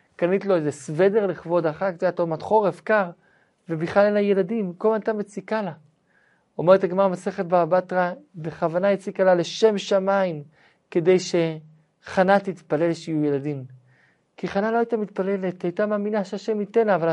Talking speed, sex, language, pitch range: 160 wpm, male, Hebrew, 165-210 Hz